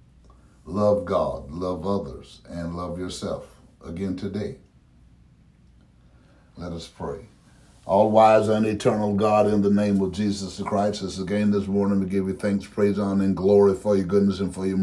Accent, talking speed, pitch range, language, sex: American, 160 wpm, 100-110 Hz, English, male